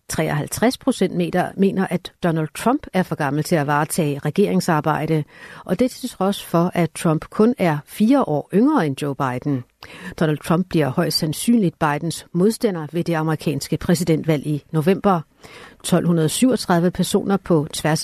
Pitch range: 155-200 Hz